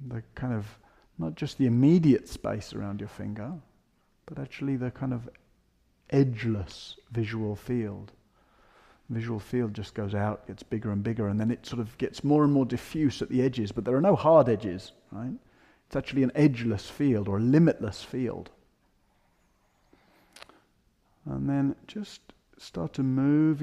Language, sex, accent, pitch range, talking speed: English, male, British, 105-135 Hz, 165 wpm